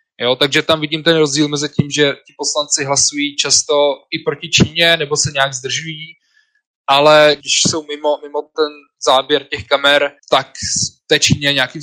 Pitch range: 140-155 Hz